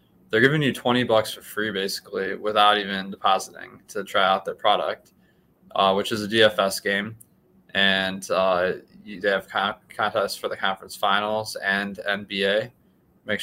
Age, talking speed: 20-39, 150 wpm